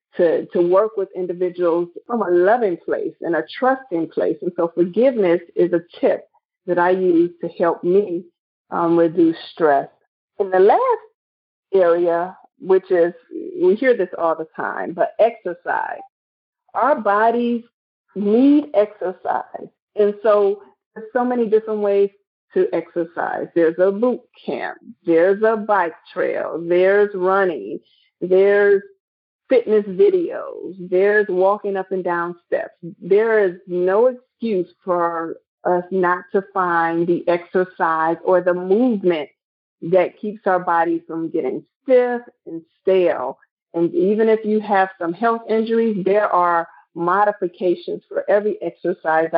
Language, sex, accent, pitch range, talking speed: English, female, American, 175-230 Hz, 135 wpm